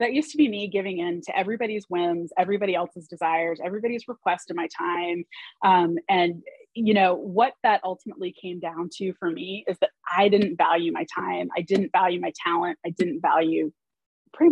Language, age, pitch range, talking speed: English, 30-49, 175-225 Hz, 190 wpm